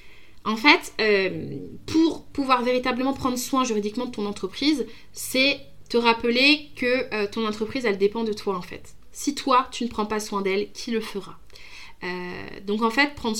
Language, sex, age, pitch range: French, female, 20-39, 215-260 Hz